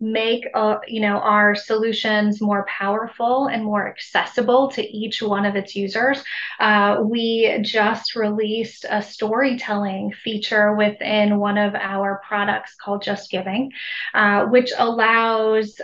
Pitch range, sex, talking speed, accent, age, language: 205-235 Hz, female, 135 wpm, American, 20-39, English